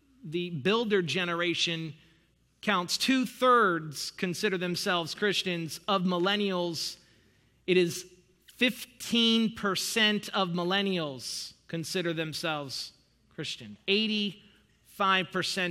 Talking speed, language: 70 wpm, English